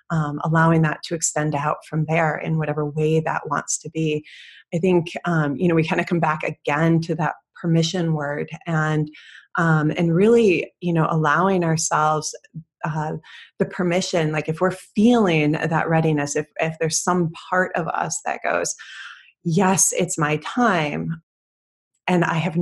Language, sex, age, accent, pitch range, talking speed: English, female, 20-39, American, 155-175 Hz, 165 wpm